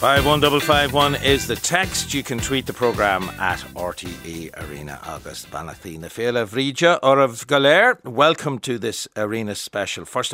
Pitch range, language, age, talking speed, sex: 90-130 Hz, English, 60-79, 170 wpm, male